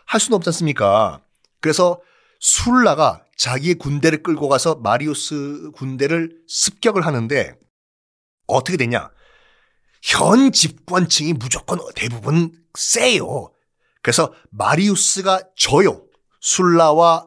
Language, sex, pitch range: Korean, male, 140-225 Hz